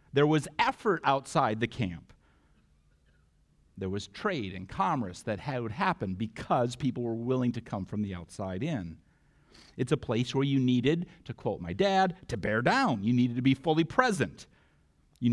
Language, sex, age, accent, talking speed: English, male, 50-69, American, 170 wpm